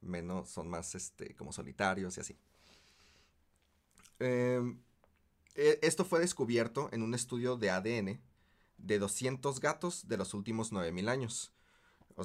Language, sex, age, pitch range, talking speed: Spanish, male, 30-49, 100-130 Hz, 125 wpm